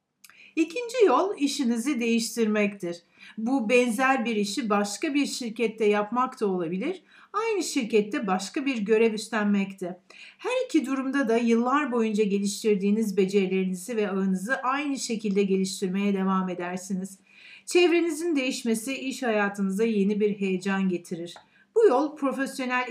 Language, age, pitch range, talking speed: Turkish, 60-79, 200-270 Hz, 125 wpm